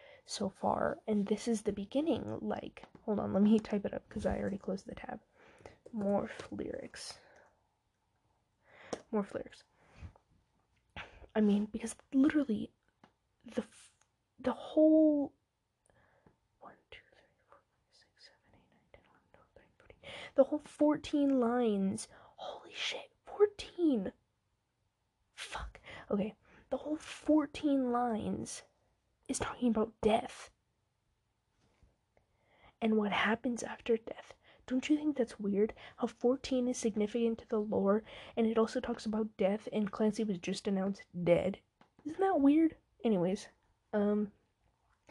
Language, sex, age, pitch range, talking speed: English, female, 20-39, 210-255 Hz, 115 wpm